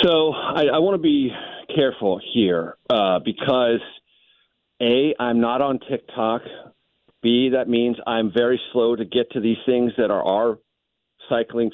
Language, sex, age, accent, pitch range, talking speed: English, male, 50-69, American, 105-130 Hz, 150 wpm